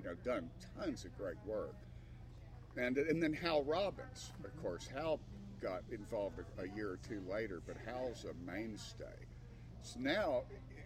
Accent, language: American, English